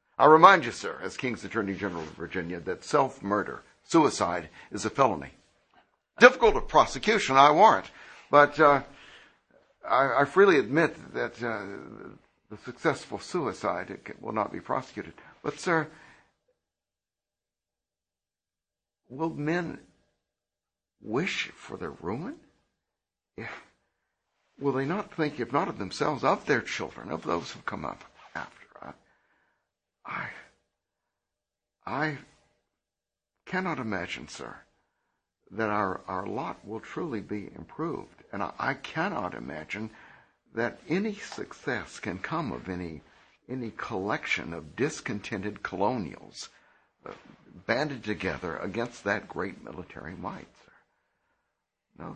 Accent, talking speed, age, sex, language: American, 115 wpm, 60-79, male, English